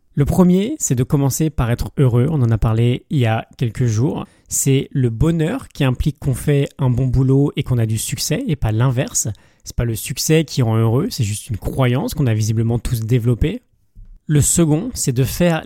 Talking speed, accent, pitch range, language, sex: 215 wpm, French, 125-155 Hz, French, male